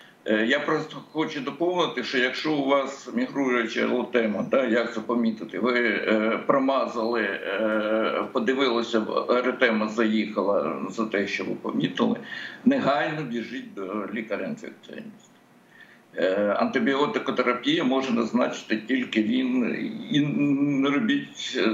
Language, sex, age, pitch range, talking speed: Ukrainian, male, 60-79, 110-160 Hz, 100 wpm